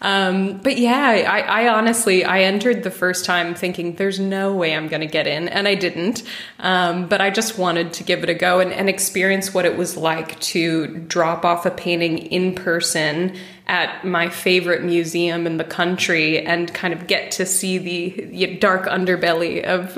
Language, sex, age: English, female, 20-39